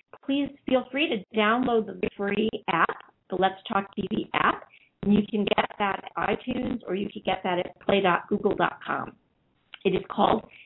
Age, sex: 50-69, female